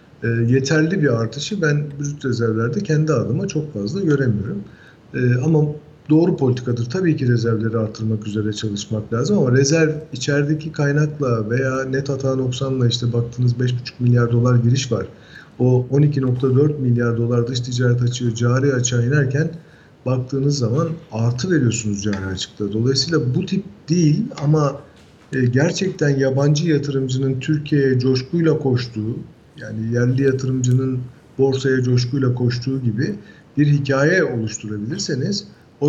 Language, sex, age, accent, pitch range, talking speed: Turkish, male, 50-69, native, 120-150 Hz, 130 wpm